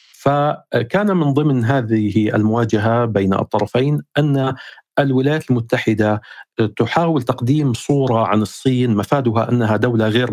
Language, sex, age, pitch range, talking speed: Arabic, male, 50-69, 110-135 Hz, 110 wpm